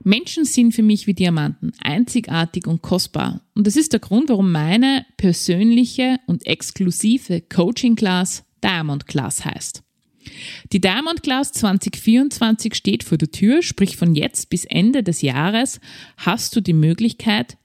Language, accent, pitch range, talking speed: German, Austrian, 180-240 Hz, 145 wpm